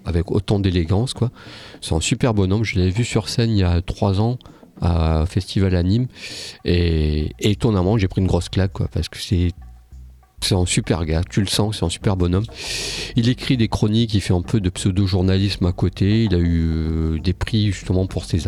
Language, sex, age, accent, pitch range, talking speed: French, male, 40-59, French, 90-115 Hz, 205 wpm